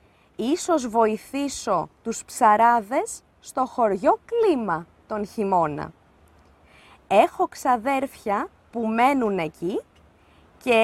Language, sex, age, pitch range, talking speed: Greek, female, 20-39, 205-325 Hz, 85 wpm